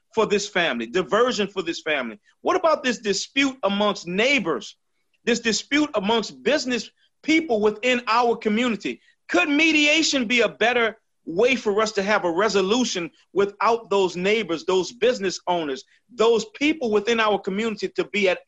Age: 40-59